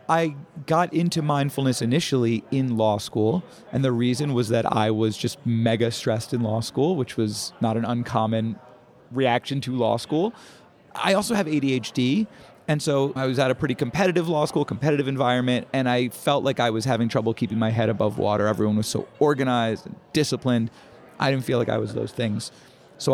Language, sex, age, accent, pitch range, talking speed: English, male, 30-49, American, 115-155 Hz, 190 wpm